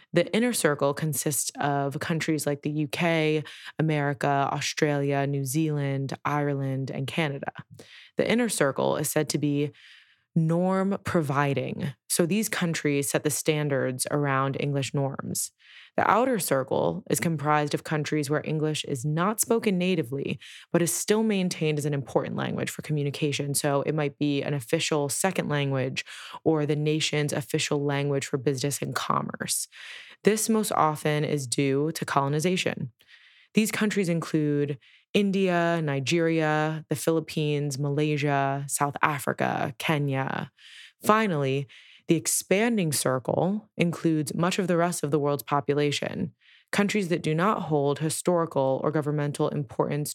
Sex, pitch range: female, 145-170 Hz